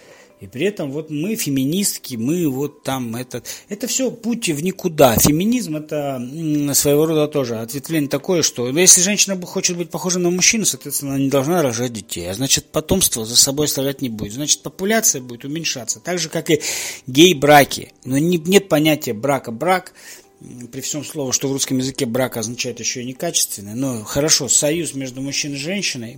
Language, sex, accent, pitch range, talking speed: Russian, male, native, 120-155 Hz, 180 wpm